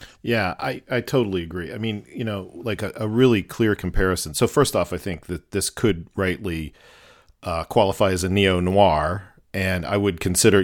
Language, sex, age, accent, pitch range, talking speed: English, male, 40-59, American, 90-110 Hz, 190 wpm